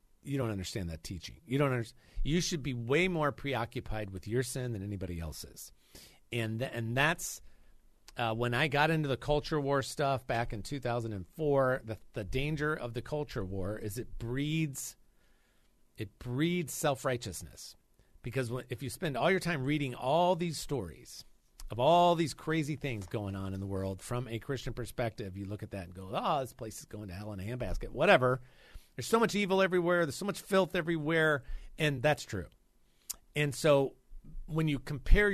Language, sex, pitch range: English, male, 105-145 Hz